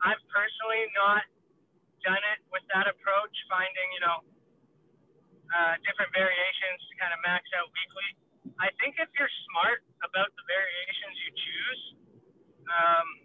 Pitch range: 175-200 Hz